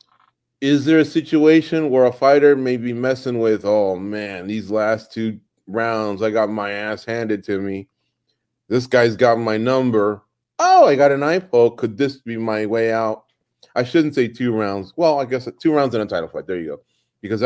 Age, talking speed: 30-49, 205 wpm